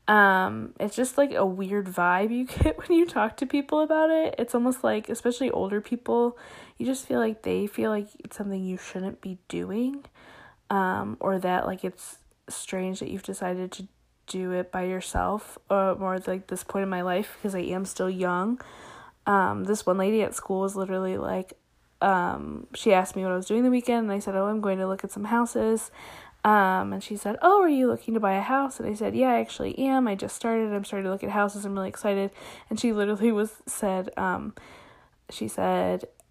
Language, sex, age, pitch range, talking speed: English, female, 10-29, 190-245 Hz, 215 wpm